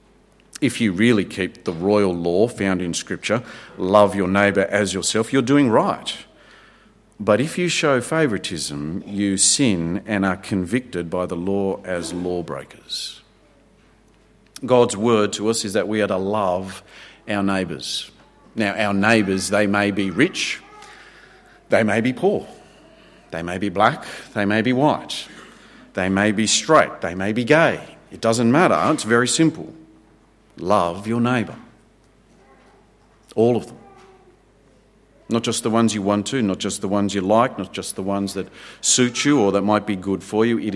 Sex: male